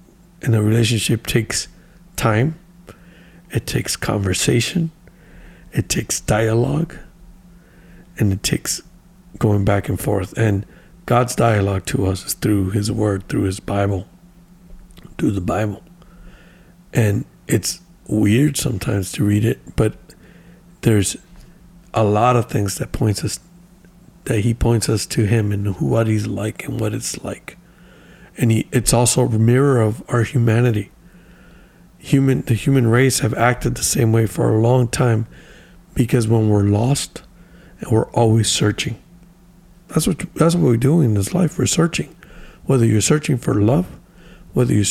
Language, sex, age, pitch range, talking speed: English, male, 60-79, 110-170 Hz, 145 wpm